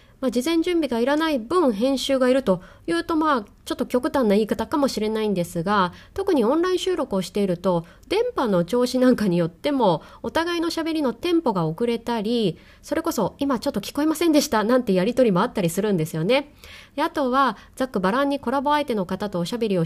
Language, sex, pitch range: Japanese, female, 195-295 Hz